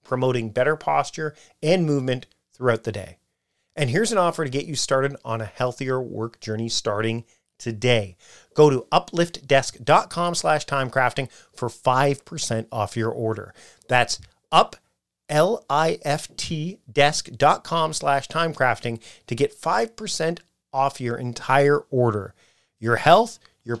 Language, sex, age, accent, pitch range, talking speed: English, male, 40-59, American, 115-155 Hz, 125 wpm